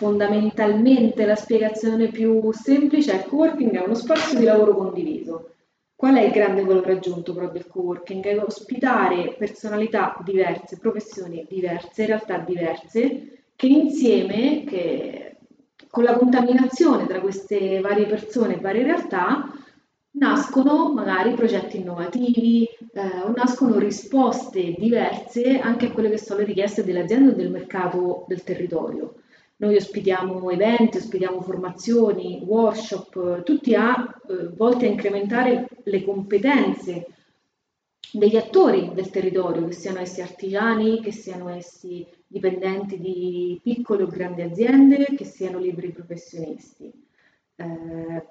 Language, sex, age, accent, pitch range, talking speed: Italian, female, 30-49, native, 185-240 Hz, 130 wpm